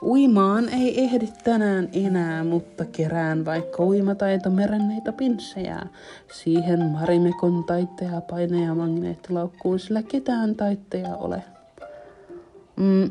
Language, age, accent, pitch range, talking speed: Finnish, 30-49, native, 175-205 Hz, 95 wpm